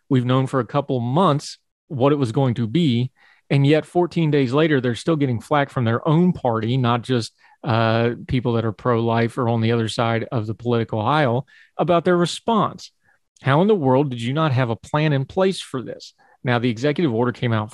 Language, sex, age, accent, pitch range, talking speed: English, male, 40-59, American, 120-155 Hz, 215 wpm